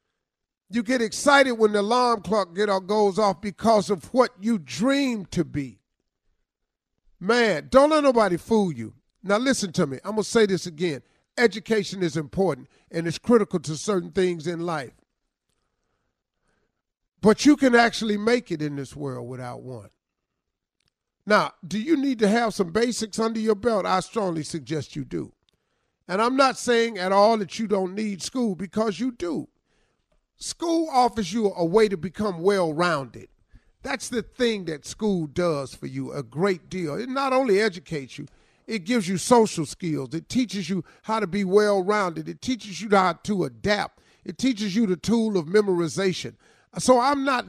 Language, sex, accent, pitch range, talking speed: English, male, American, 175-235 Hz, 175 wpm